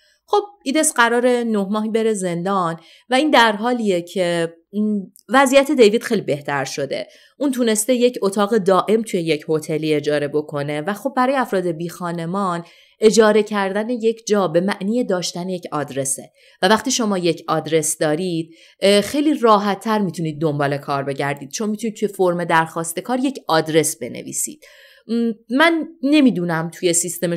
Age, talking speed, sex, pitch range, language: 30-49, 145 wpm, female, 165-235 Hz, Persian